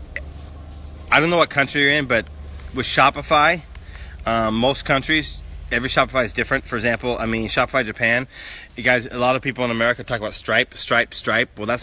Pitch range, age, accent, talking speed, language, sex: 100-125 Hz, 30-49, American, 195 wpm, English, male